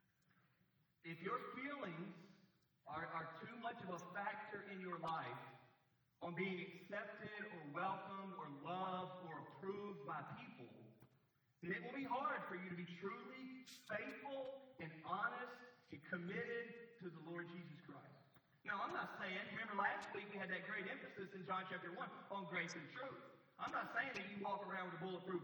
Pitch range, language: 160-195 Hz, English